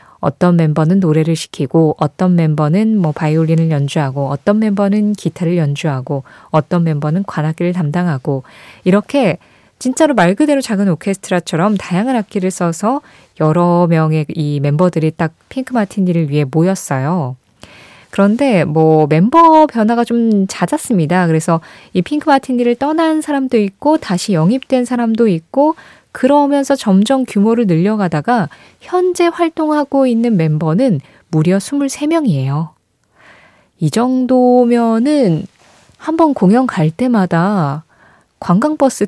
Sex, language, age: female, Korean, 20-39